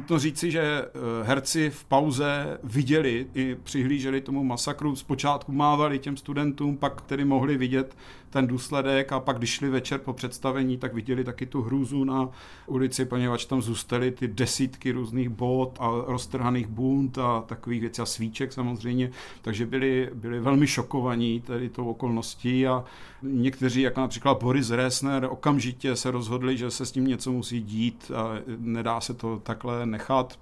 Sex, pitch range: male, 120-140 Hz